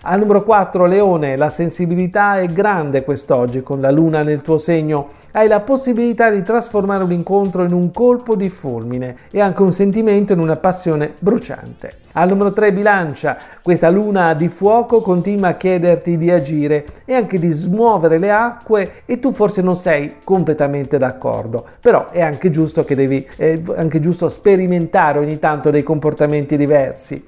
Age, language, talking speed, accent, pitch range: 40-59, Italian, 165 wpm, native, 155-205 Hz